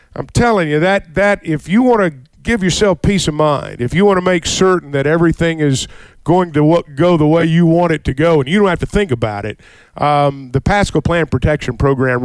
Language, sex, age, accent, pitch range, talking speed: English, male, 50-69, American, 135-170 Hz, 235 wpm